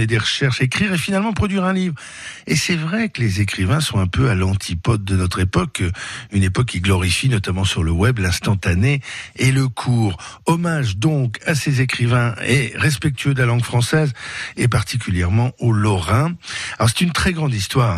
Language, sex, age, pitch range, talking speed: French, male, 60-79, 100-155 Hz, 185 wpm